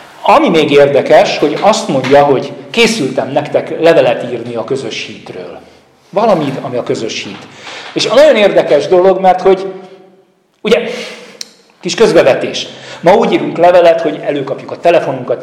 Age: 40-59